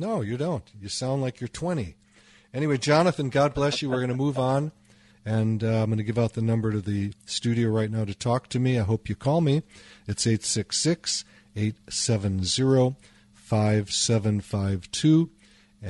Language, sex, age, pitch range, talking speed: English, male, 40-59, 105-120 Hz, 160 wpm